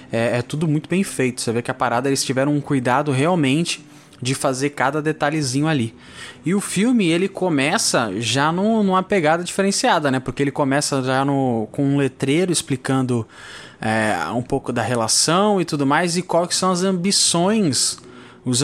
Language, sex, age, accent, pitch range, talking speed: Portuguese, male, 20-39, Brazilian, 135-180 Hz, 165 wpm